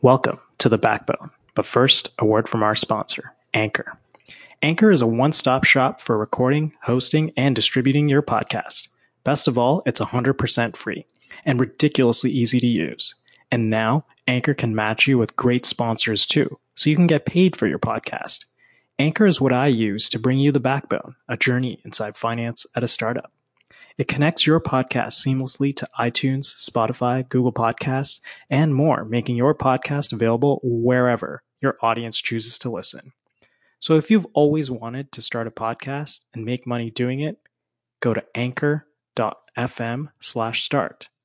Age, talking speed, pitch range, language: 20-39, 160 wpm, 115-140 Hz, English